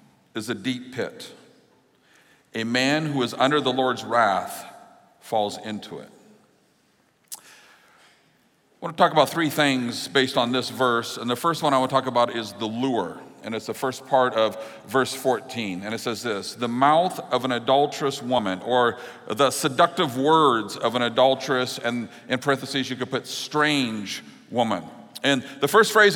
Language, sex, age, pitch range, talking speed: English, male, 50-69, 130-160 Hz, 165 wpm